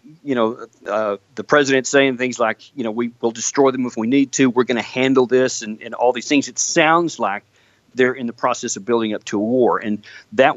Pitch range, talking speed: 115-145 Hz, 245 wpm